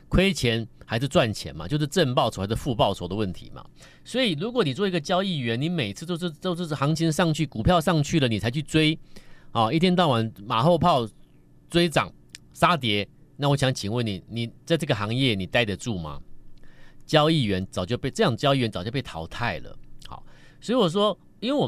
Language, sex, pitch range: Chinese, male, 95-145 Hz